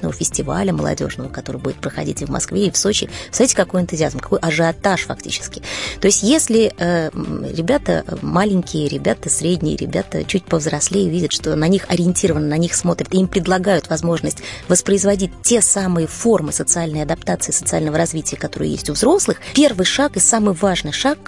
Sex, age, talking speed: female, 20-39, 165 wpm